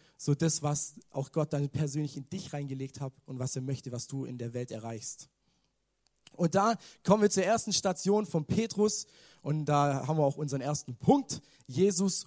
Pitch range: 145-185 Hz